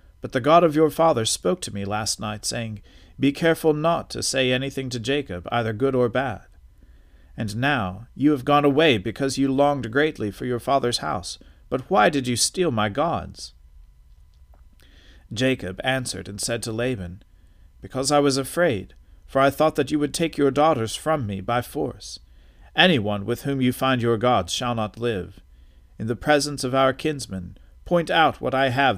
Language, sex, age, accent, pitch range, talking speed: English, male, 50-69, American, 90-135 Hz, 185 wpm